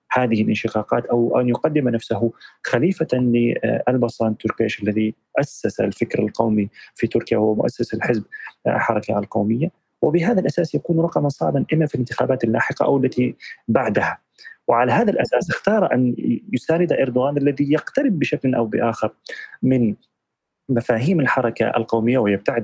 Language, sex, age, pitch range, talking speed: Arabic, male, 30-49, 110-130 Hz, 130 wpm